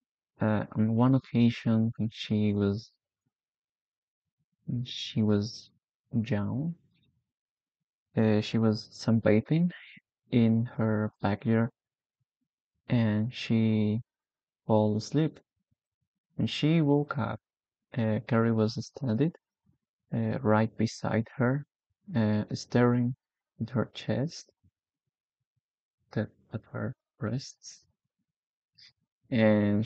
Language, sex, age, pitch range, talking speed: English, male, 20-39, 110-125 Hz, 85 wpm